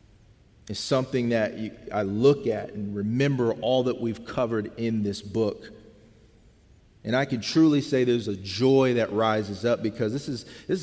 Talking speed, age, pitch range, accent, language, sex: 165 wpm, 40-59, 110-140 Hz, American, English, male